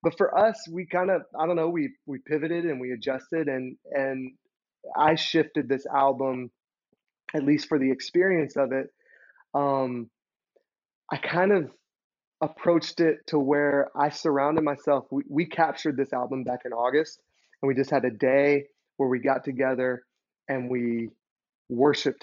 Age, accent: 30-49, American